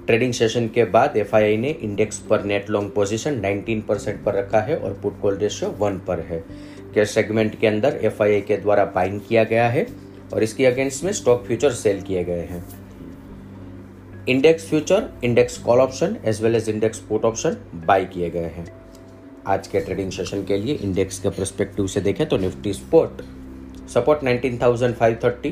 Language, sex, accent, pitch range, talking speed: Hindi, male, native, 95-120 Hz, 175 wpm